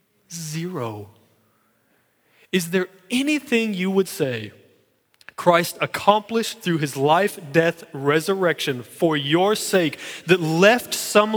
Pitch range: 145-215 Hz